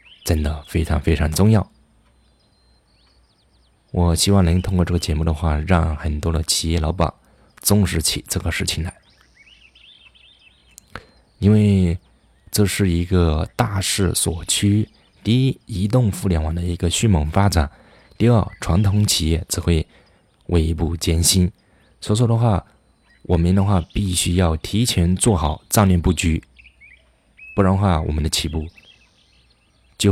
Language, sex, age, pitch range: Chinese, male, 20-39, 80-105 Hz